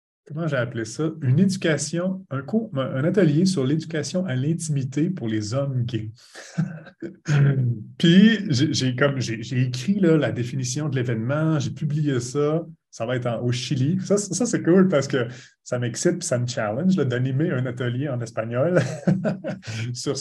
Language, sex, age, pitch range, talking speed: French, male, 30-49, 120-155 Hz, 175 wpm